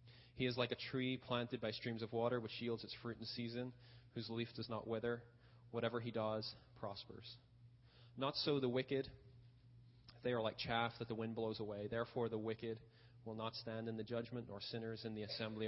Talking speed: 200 wpm